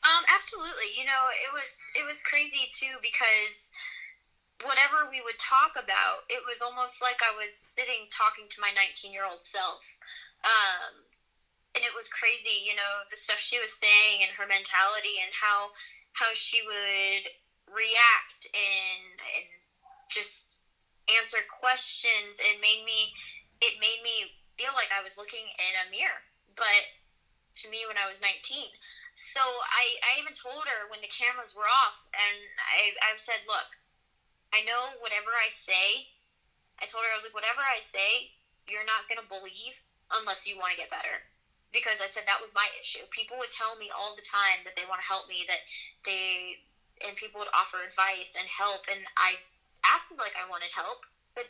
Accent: American